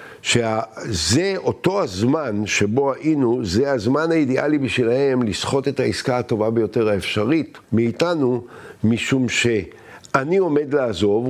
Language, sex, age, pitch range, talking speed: Hebrew, male, 60-79, 110-145 Hz, 105 wpm